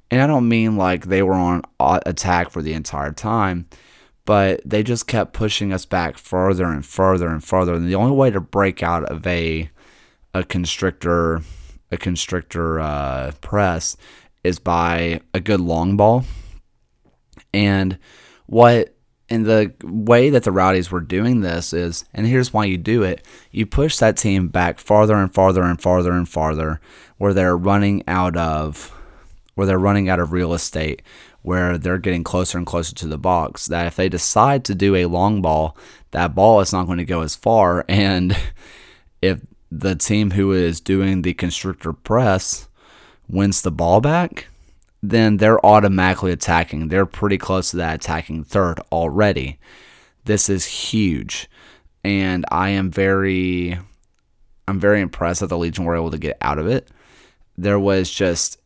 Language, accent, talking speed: English, American, 170 wpm